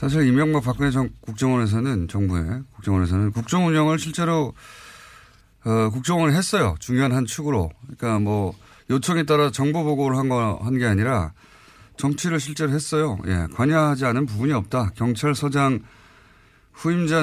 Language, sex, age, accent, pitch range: Korean, male, 30-49, native, 105-150 Hz